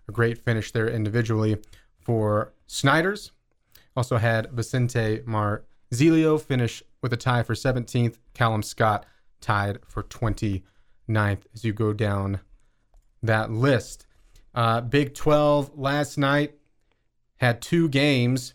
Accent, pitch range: American, 115-130 Hz